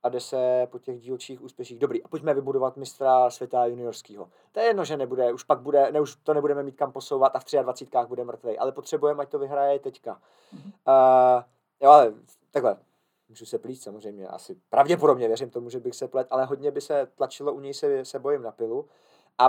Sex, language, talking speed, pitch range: male, Czech, 215 wpm, 130-155 Hz